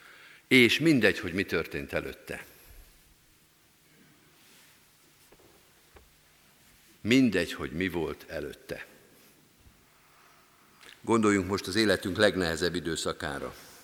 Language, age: Hungarian, 50-69